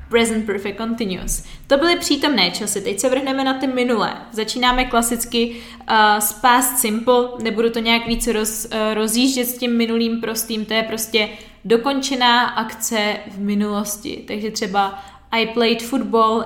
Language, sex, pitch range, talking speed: Czech, female, 215-245 Hz, 140 wpm